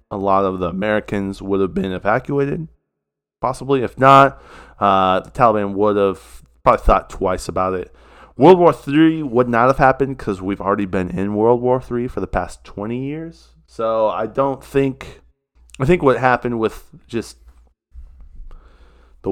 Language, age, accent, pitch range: English, 20-39, American, 90-115 Hz